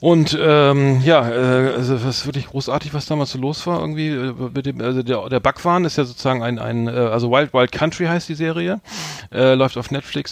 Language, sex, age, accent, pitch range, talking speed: German, male, 40-59, German, 120-140 Hz, 215 wpm